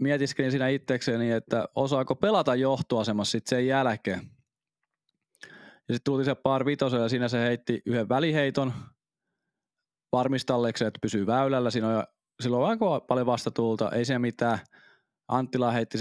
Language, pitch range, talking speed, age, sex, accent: Finnish, 115-140 Hz, 140 wpm, 20-39, male, native